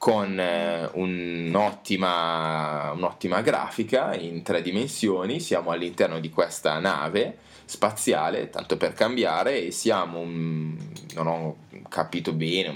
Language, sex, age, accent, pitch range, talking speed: Italian, male, 20-39, native, 85-130 Hz, 110 wpm